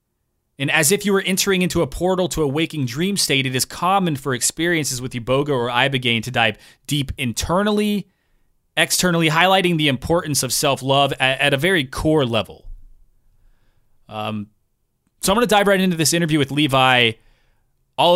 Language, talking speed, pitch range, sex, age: English, 170 wpm, 110-145 Hz, male, 30-49